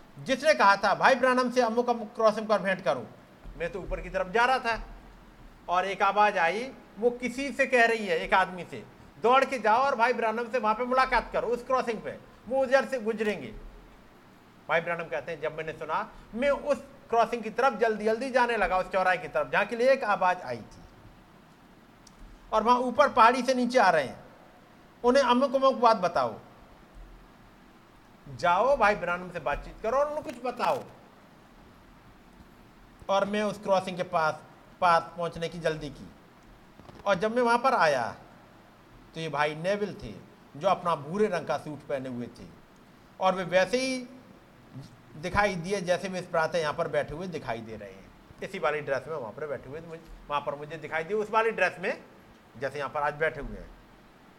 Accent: native